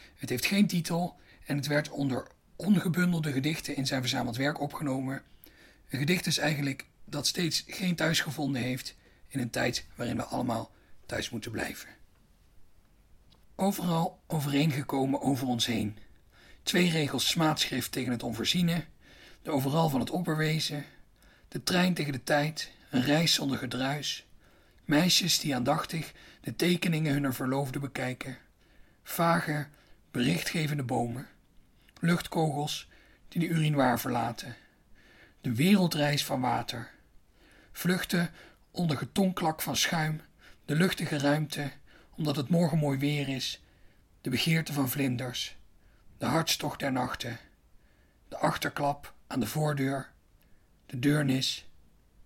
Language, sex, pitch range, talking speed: Dutch, male, 125-160 Hz, 125 wpm